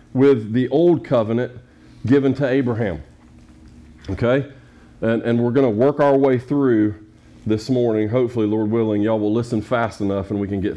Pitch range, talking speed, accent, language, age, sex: 115-150 Hz, 175 wpm, American, English, 40-59, male